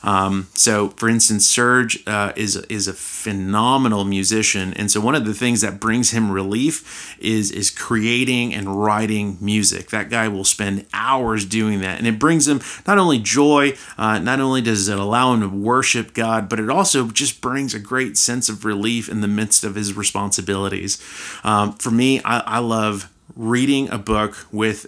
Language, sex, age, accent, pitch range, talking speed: English, male, 30-49, American, 100-120 Hz, 185 wpm